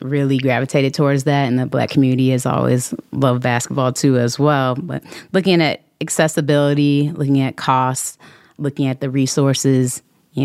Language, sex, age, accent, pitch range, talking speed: English, female, 30-49, American, 130-150 Hz, 155 wpm